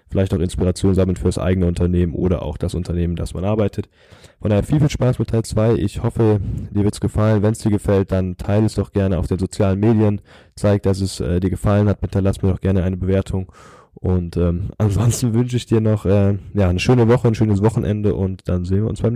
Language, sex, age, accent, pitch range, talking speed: English, male, 10-29, German, 95-115 Hz, 235 wpm